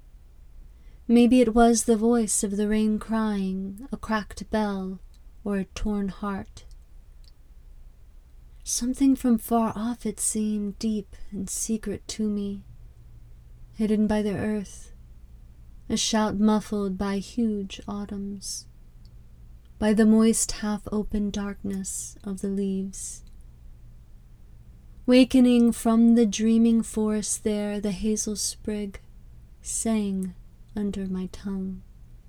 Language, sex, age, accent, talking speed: English, female, 30-49, American, 110 wpm